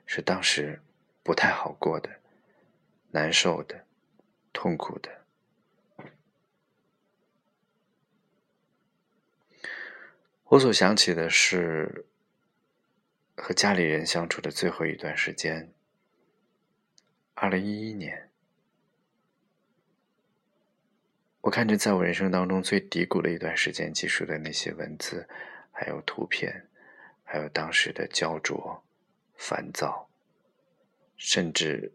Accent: native